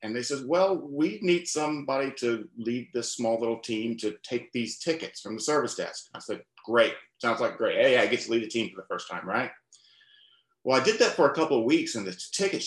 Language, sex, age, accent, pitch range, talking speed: English, male, 40-59, American, 110-185 Hz, 240 wpm